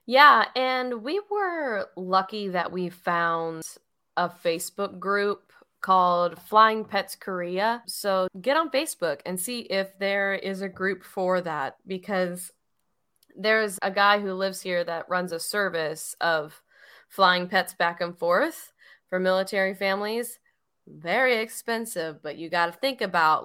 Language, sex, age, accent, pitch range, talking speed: English, female, 10-29, American, 175-215 Hz, 145 wpm